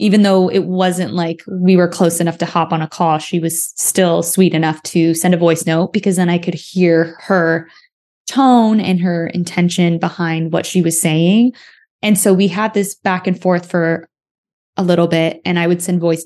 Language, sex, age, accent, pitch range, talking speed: English, female, 20-39, American, 170-190 Hz, 205 wpm